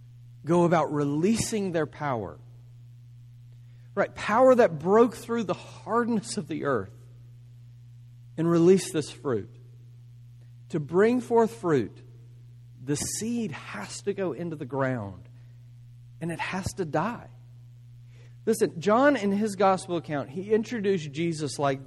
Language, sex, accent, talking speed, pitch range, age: English, male, American, 125 wpm, 120-195 Hz, 40-59